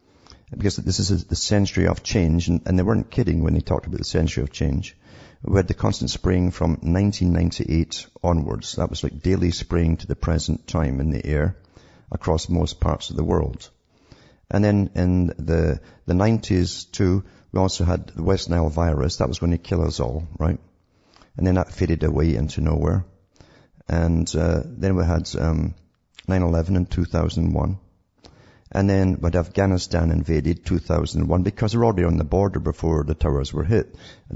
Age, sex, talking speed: 50-69, male, 180 wpm